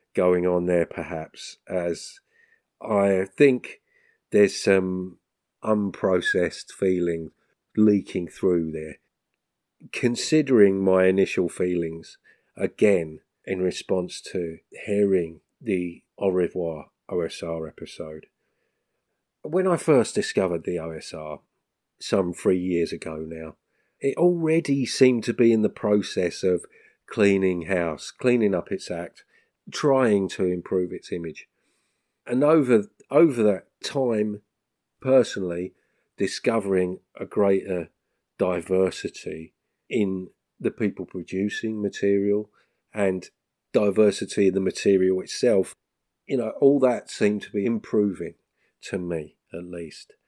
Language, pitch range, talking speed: English, 90-110 Hz, 110 wpm